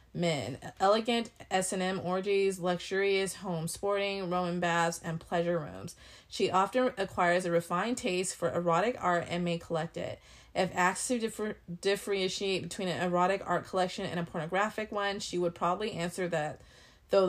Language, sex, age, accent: English, female, 30-49, American